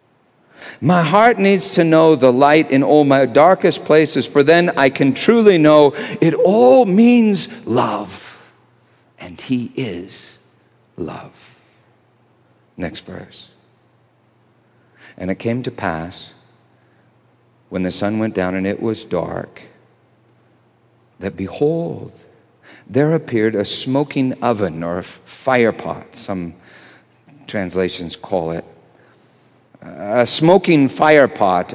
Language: English